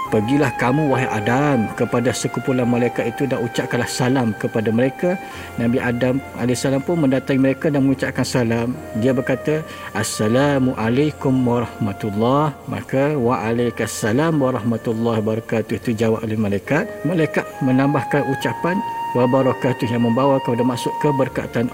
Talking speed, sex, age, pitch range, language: 125 wpm, male, 50-69, 115-140 Hz, Malay